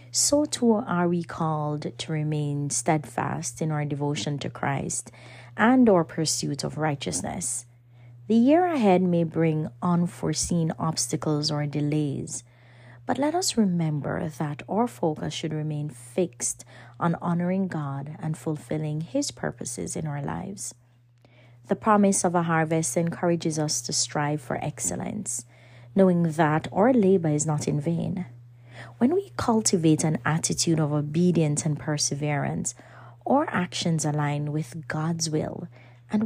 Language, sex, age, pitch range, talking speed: English, female, 30-49, 135-175 Hz, 135 wpm